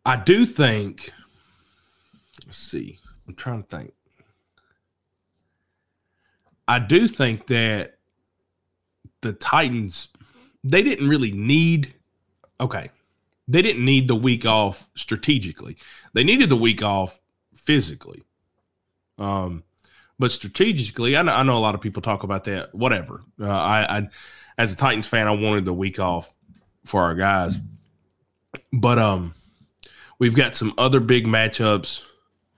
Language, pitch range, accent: English, 95-130 Hz, American